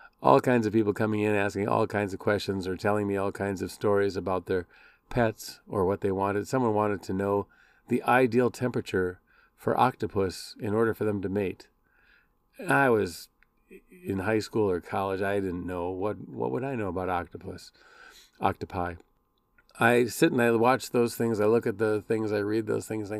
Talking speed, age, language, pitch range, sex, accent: 195 wpm, 40-59, English, 100-120 Hz, male, American